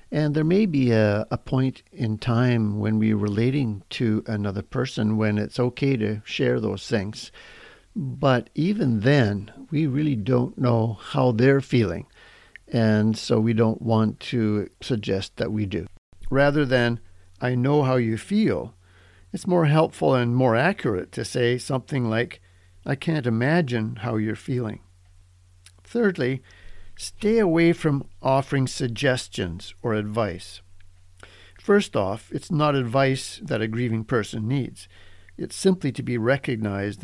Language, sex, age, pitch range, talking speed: English, male, 50-69, 105-135 Hz, 145 wpm